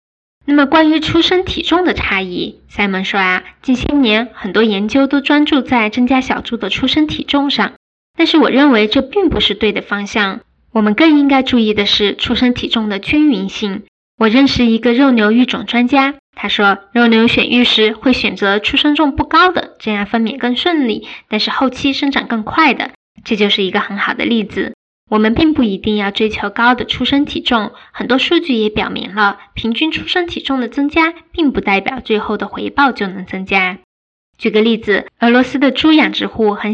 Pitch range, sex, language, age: 215-280 Hz, female, Chinese, 10-29